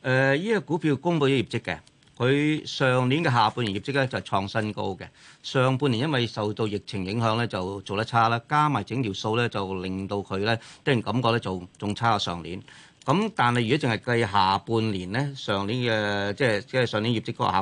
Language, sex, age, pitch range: Chinese, male, 40-59, 105-145 Hz